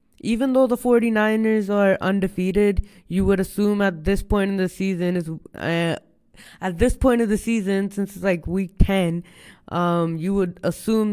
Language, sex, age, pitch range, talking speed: English, female, 20-39, 175-200 Hz, 175 wpm